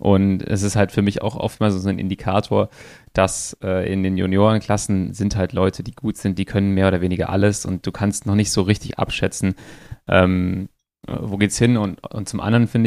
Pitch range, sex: 100-110 Hz, male